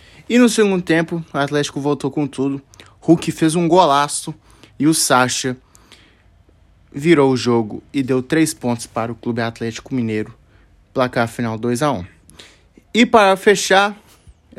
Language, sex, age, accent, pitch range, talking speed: Portuguese, male, 20-39, Brazilian, 120-160 Hz, 140 wpm